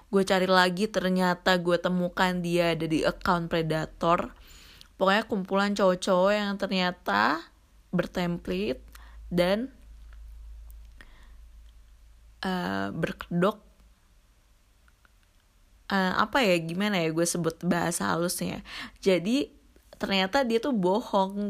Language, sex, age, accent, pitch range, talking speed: Indonesian, female, 20-39, native, 165-200 Hz, 95 wpm